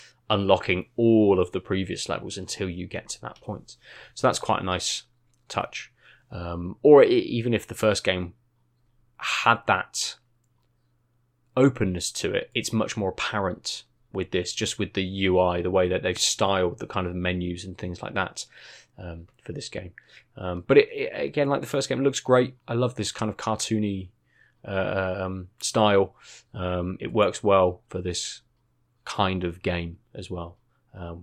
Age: 20-39